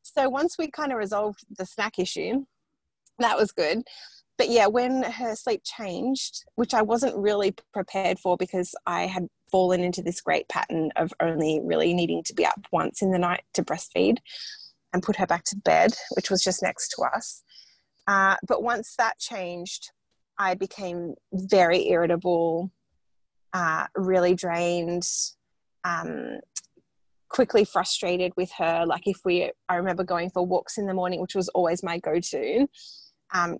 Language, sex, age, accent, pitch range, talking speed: English, female, 20-39, Australian, 180-230 Hz, 165 wpm